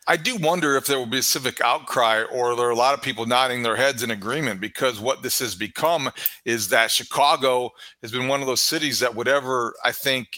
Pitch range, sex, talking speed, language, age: 120-145 Hz, male, 230 wpm, English, 40-59